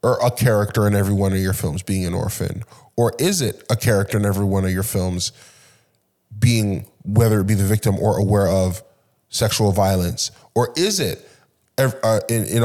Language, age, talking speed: English, 20-39, 180 wpm